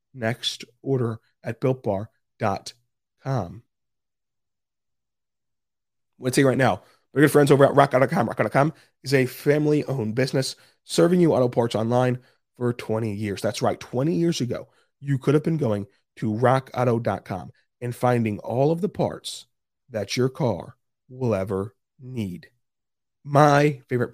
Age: 30-49